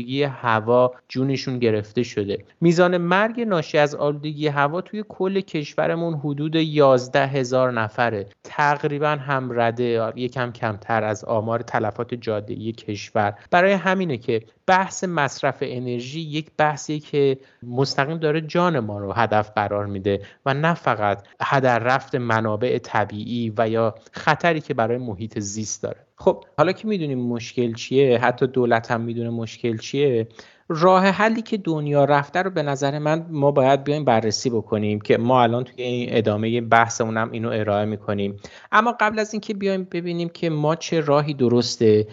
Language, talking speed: Persian, 155 wpm